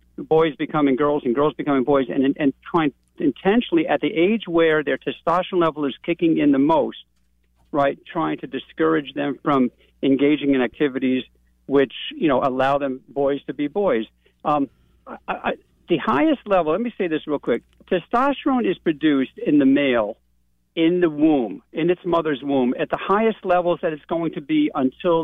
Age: 50-69